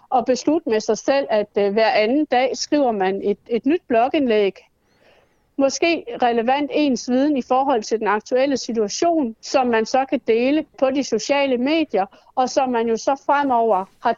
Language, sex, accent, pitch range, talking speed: Danish, female, native, 225-275 Hz, 175 wpm